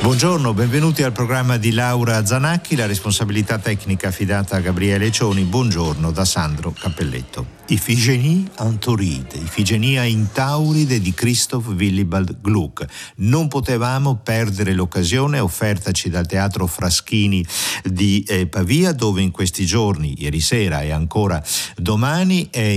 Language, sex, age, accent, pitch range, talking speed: Italian, male, 50-69, native, 85-115 Hz, 115 wpm